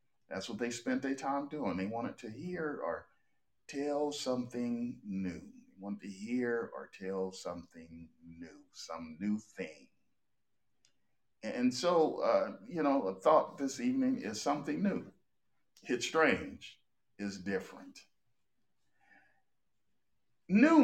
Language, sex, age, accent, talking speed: English, male, 50-69, American, 120 wpm